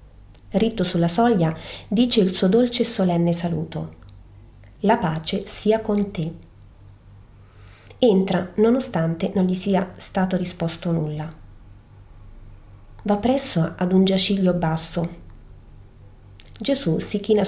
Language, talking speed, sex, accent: Italian, 110 wpm, female, native